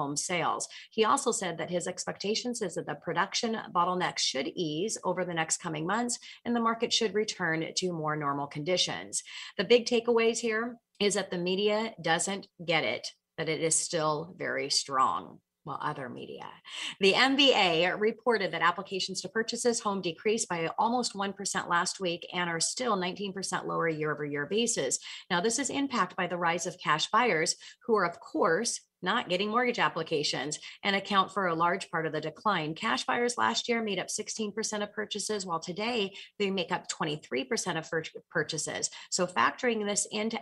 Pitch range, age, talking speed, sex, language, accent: 165-220 Hz, 30-49, 175 wpm, female, English, American